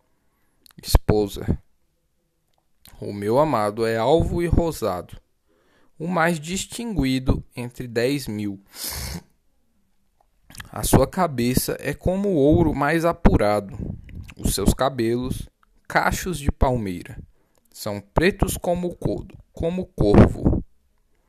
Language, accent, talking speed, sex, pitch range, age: Portuguese, Brazilian, 105 wpm, male, 100-150 Hz, 10-29